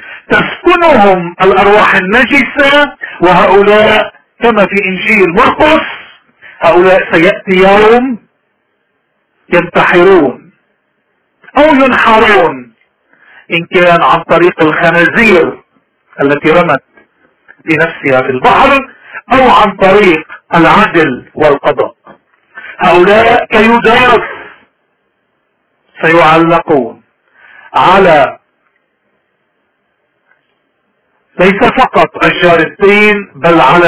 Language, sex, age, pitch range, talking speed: Arabic, male, 50-69, 175-240 Hz, 70 wpm